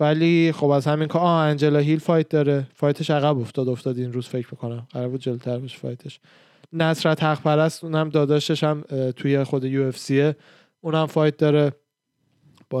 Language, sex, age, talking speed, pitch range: Persian, male, 20-39, 155 wpm, 130-160 Hz